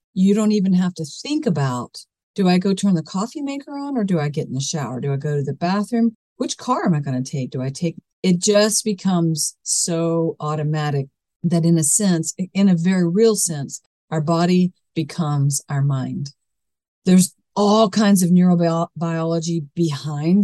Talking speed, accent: 185 wpm, American